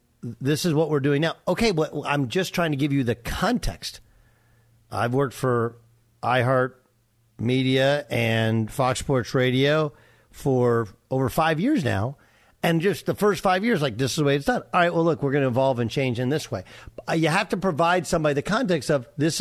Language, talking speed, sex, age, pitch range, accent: English, 205 wpm, male, 50-69, 120-170 Hz, American